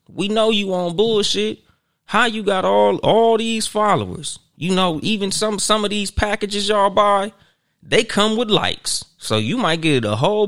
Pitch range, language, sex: 110-170 Hz, English, male